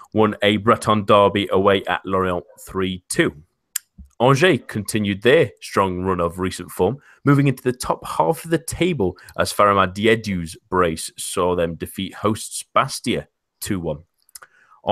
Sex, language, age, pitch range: male, English, 30-49, 90-115 Hz